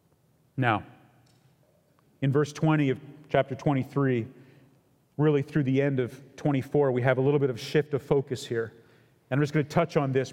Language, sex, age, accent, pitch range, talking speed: English, male, 40-59, American, 135-160 Hz, 180 wpm